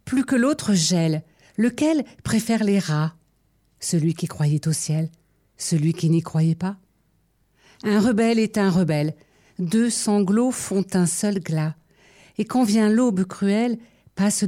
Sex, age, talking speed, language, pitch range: female, 50-69, 145 wpm, French, 155-205 Hz